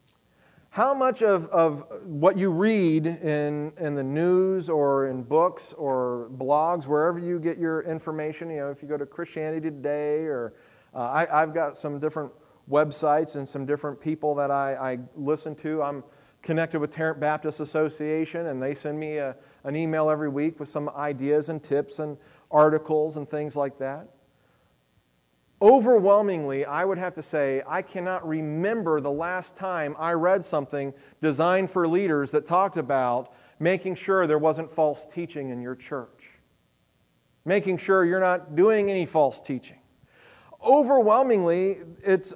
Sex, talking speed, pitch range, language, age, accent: male, 160 wpm, 150-190 Hz, English, 40-59, American